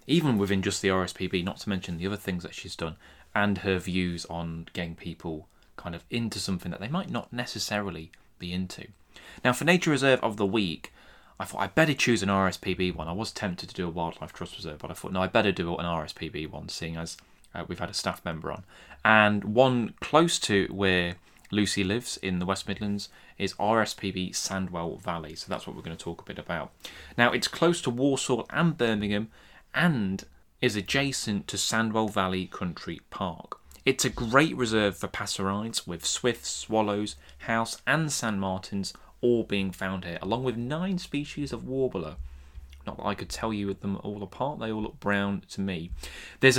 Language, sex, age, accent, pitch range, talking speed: English, male, 20-39, British, 90-120 Hz, 195 wpm